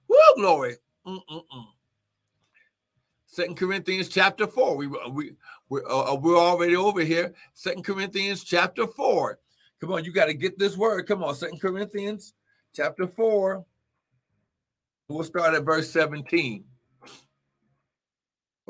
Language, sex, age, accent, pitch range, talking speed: English, male, 60-79, American, 165-225 Hz, 120 wpm